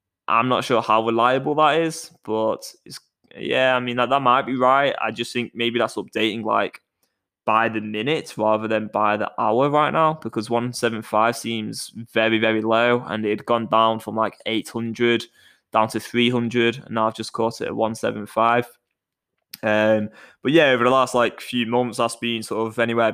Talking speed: 190 wpm